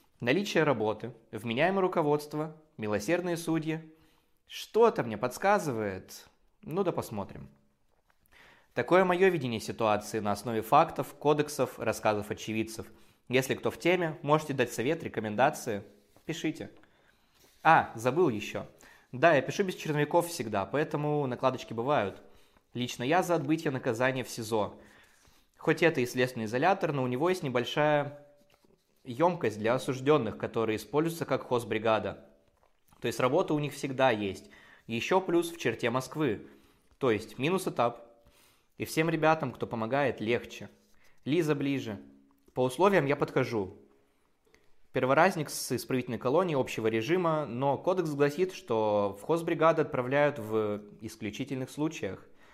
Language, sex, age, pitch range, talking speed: Russian, male, 20-39, 110-155 Hz, 130 wpm